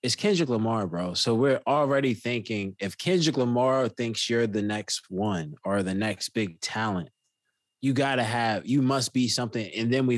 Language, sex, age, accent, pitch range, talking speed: English, male, 20-39, American, 100-125 Hz, 185 wpm